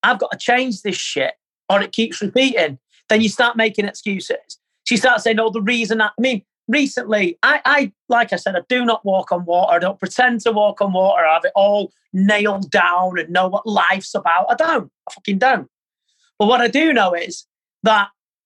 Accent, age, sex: British, 40-59, male